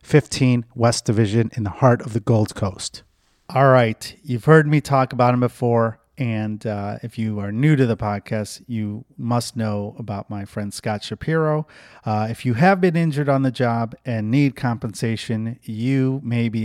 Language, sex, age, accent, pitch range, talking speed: English, male, 30-49, American, 110-130 Hz, 185 wpm